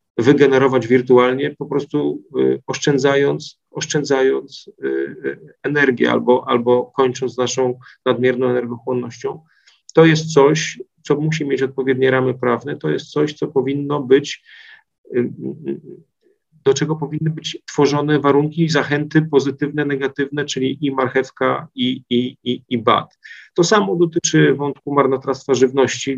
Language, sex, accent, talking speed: Polish, male, native, 115 wpm